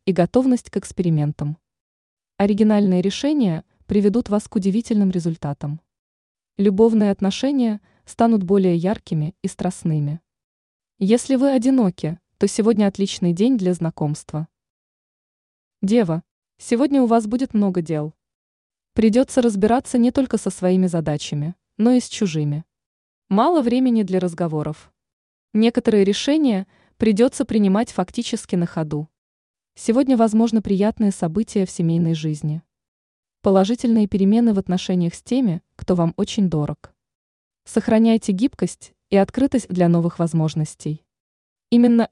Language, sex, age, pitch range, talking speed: Russian, female, 20-39, 170-230 Hz, 115 wpm